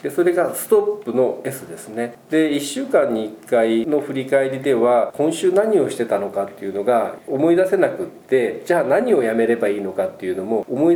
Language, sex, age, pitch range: Japanese, male, 40-59, 115-190 Hz